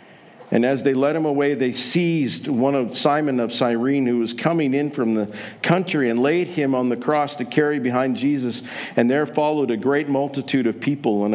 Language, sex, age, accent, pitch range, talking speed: English, male, 50-69, American, 110-140 Hz, 205 wpm